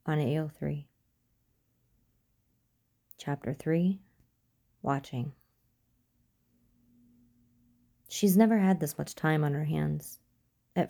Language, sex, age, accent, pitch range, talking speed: English, female, 30-49, American, 125-165 Hz, 85 wpm